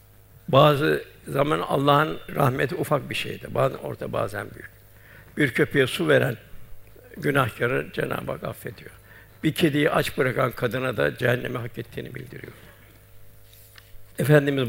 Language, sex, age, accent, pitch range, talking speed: Turkish, male, 60-79, native, 110-145 Hz, 125 wpm